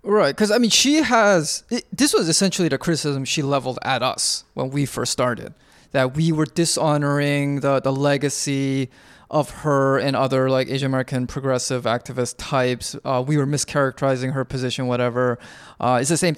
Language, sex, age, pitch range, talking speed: English, male, 20-39, 125-145 Hz, 175 wpm